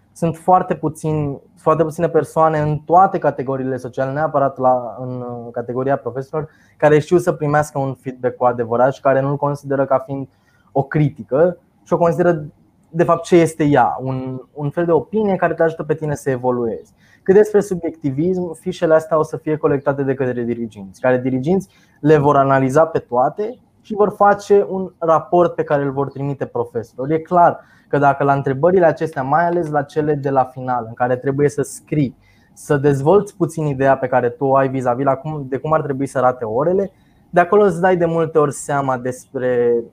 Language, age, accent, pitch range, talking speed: Romanian, 20-39, native, 130-165 Hz, 185 wpm